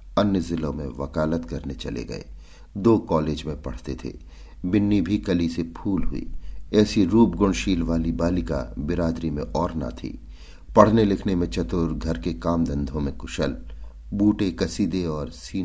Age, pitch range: 50-69, 75-95 Hz